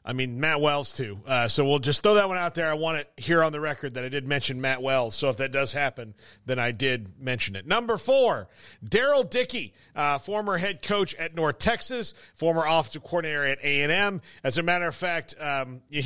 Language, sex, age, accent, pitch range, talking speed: English, male, 40-59, American, 145-190 Hz, 220 wpm